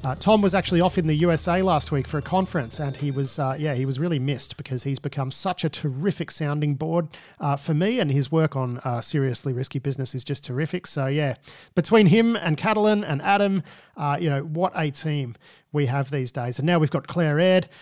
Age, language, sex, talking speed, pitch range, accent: 40-59, English, male, 230 wpm, 140-185 Hz, Australian